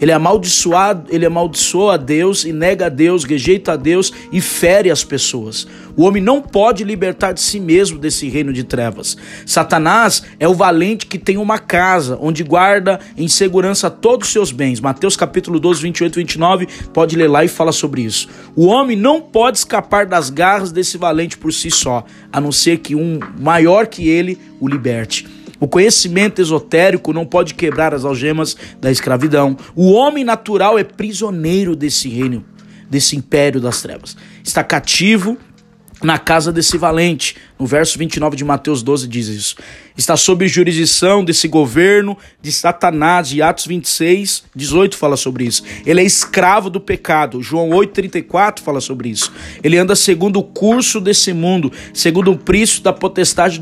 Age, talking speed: 20-39, 170 wpm